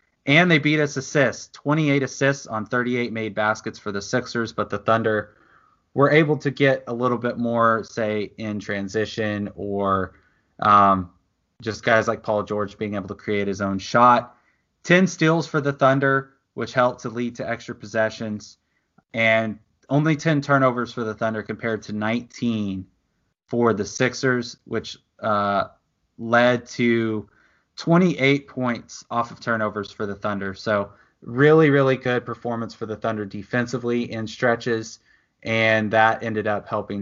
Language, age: English, 20-39